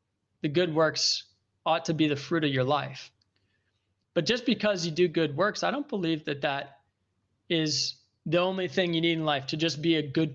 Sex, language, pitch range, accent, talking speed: male, English, 130-175 Hz, American, 210 wpm